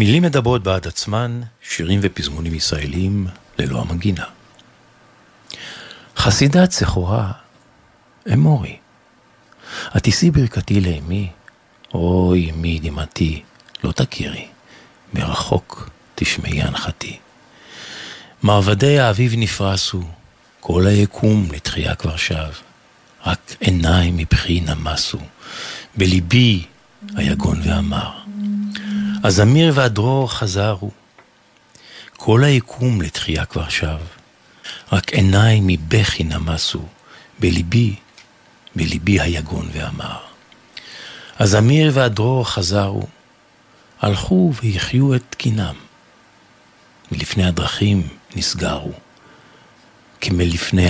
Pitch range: 85-115 Hz